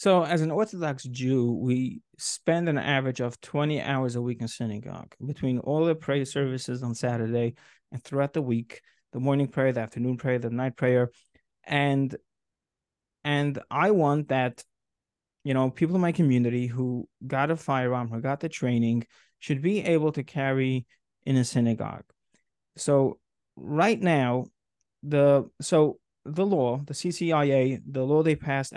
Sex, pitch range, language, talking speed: male, 125-150 Hz, English, 160 wpm